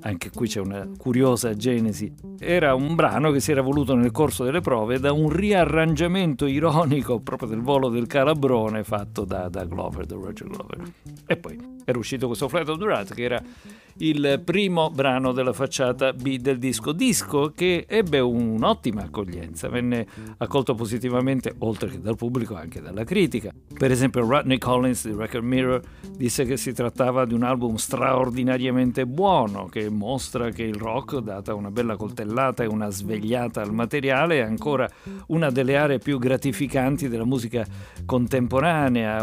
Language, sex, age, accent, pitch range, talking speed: Italian, male, 50-69, native, 110-145 Hz, 165 wpm